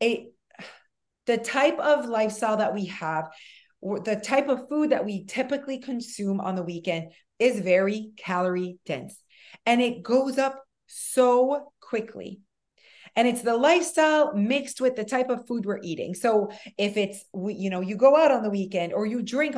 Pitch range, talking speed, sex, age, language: 195-255 Hz, 170 wpm, female, 30-49, English